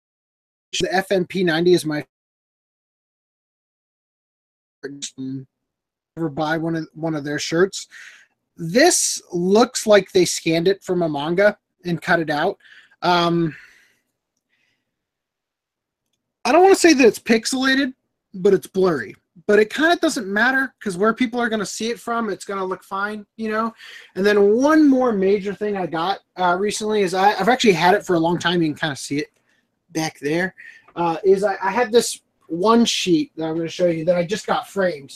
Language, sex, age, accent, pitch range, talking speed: English, male, 30-49, American, 165-215 Hz, 185 wpm